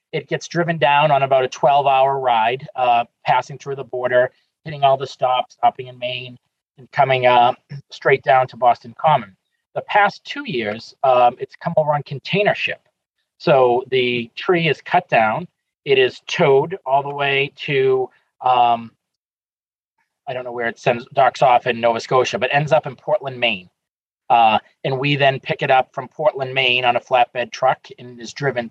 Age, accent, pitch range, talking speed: 30-49, American, 125-155 Hz, 185 wpm